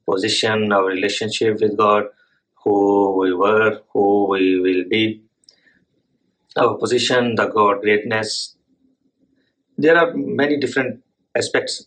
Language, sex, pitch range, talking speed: English, male, 105-125 Hz, 110 wpm